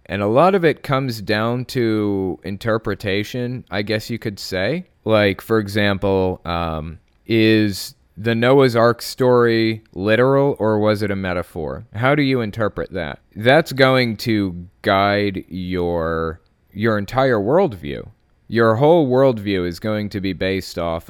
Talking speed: 145 wpm